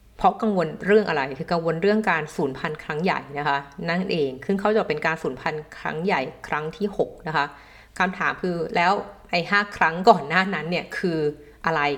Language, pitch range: Thai, 145-185 Hz